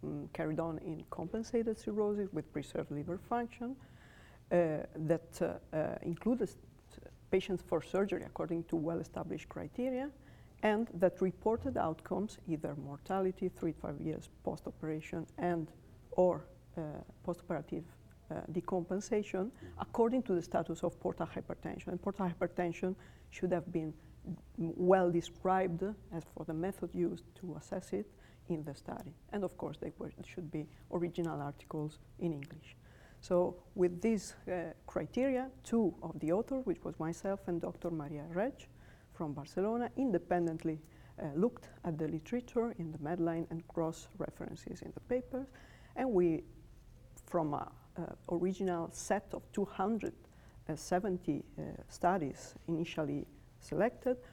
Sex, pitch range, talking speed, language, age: female, 160-195 Hz, 135 wpm, English, 50-69